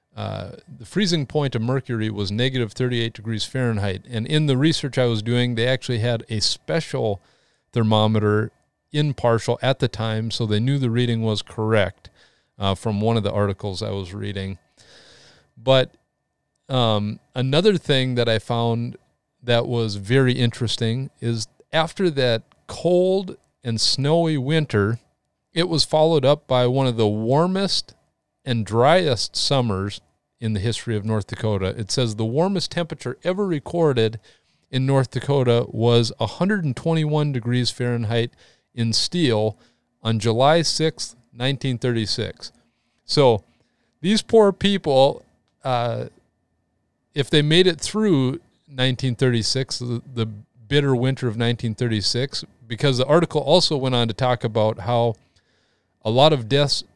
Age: 40-59